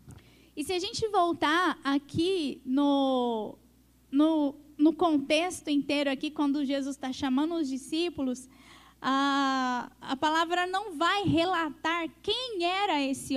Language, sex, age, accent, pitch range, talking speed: Portuguese, female, 10-29, Brazilian, 270-345 Hz, 120 wpm